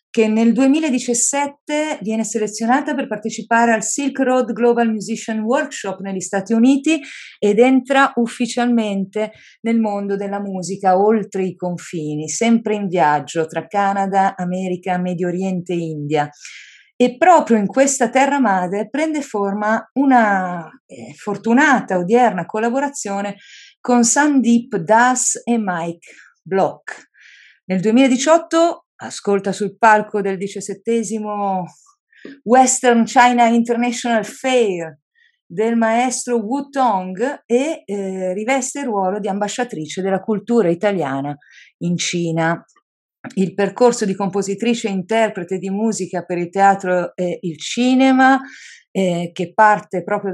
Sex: female